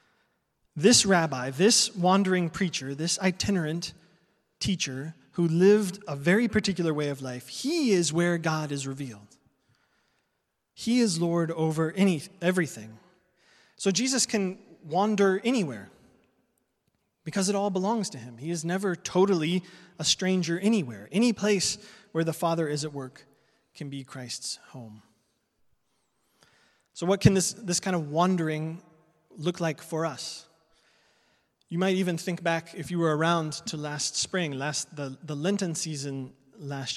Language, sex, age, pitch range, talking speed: English, male, 20-39, 145-185 Hz, 145 wpm